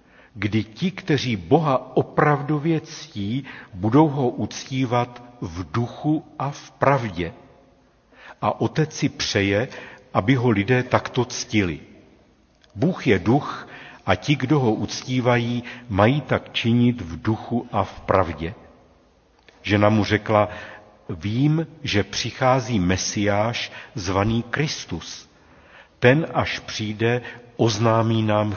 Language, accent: Czech, native